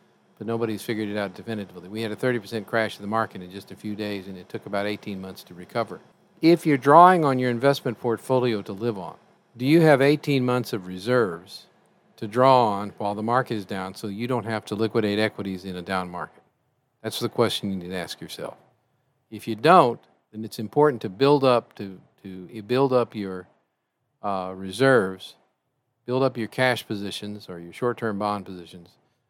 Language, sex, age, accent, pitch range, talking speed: English, male, 50-69, American, 100-125 Hz, 200 wpm